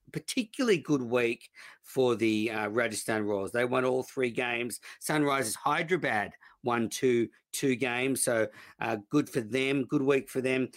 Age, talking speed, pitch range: 50-69, 155 wpm, 115-145 Hz